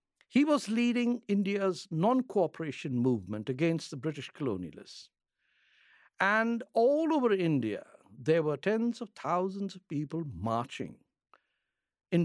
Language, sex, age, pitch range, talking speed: English, male, 60-79, 145-225 Hz, 115 wpm